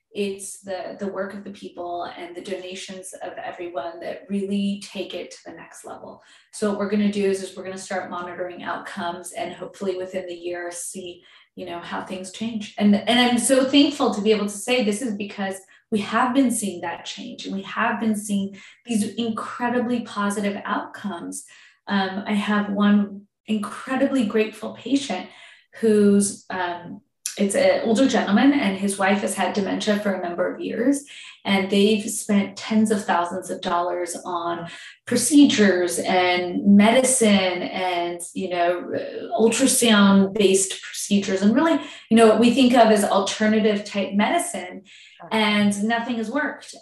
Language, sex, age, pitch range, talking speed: English, female, 20-39, 190-225 Hz, 170 wpm